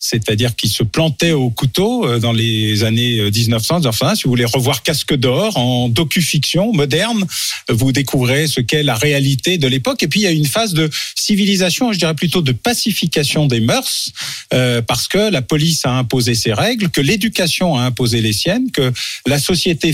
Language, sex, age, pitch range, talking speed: French, male, 40-59, 125-175 Hz, 185 wpm